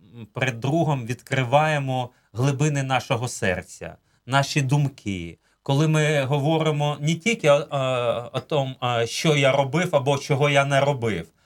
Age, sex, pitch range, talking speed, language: 30-49, male, 120-145 Hz, 130 wpm, Ukrainian